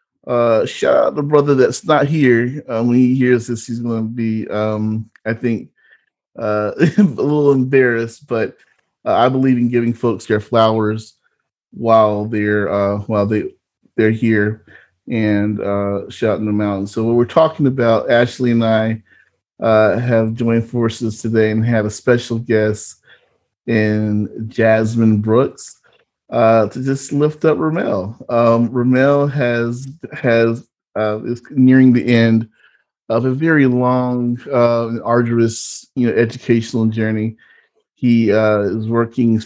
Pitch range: 110-125 Hz